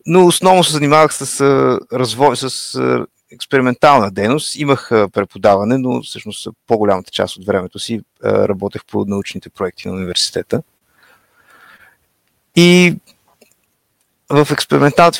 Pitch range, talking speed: 105-130 Hz, 120 wpm